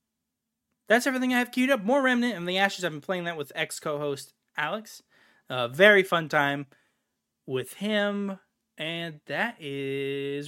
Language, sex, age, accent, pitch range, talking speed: English, male, 20-39, American, 140-205 Hz, 155 wpm